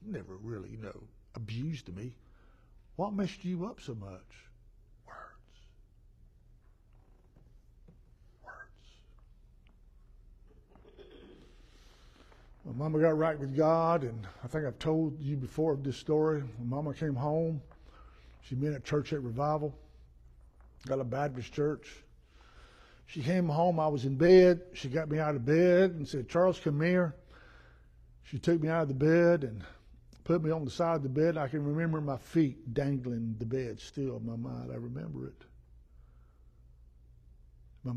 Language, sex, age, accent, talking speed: English, male, 60-79, American, 150 wpm